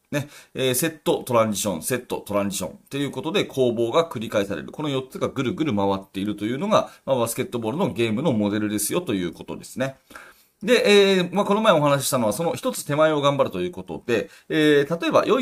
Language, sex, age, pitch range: Japanese, male, 30-49, 115-165 Hz